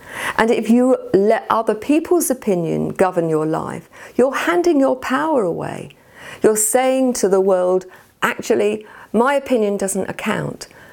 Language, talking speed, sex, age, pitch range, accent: English, 135 wpm, female, 50-69, 175-240 Hz, British